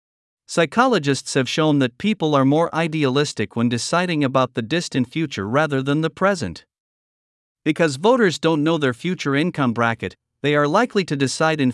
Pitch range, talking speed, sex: 125-170 Hz, 165 wpm, male